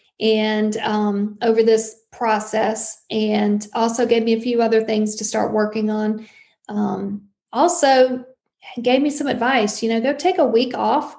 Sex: female